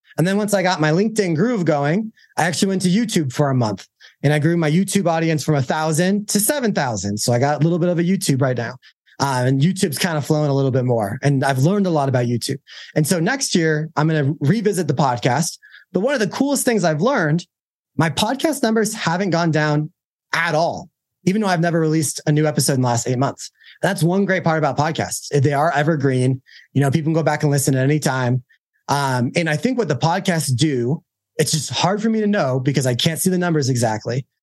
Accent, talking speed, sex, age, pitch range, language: American, 235 wpm, male, 30-49, 140-185 Hz, English